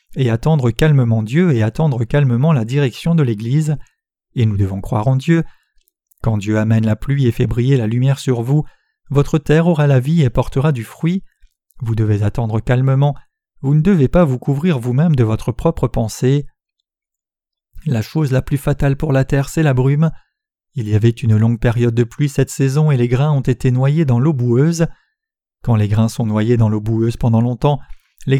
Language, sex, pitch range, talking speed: French, male, 120-155 Hz, 200 wpm